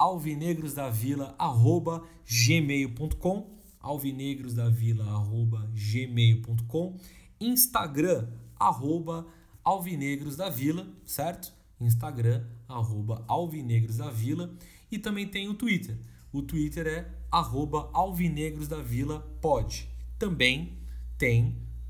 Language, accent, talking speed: Portuguese, Brazilian, 75 wpm